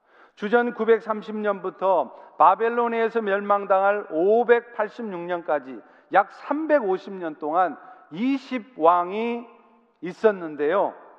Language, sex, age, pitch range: Korean, male, 40-59, 185-240 Hz